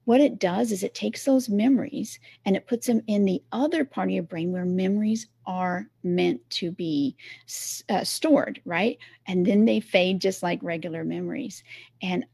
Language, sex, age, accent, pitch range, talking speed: English, female, 40-59, American, 175-235 Hz, 180 wpm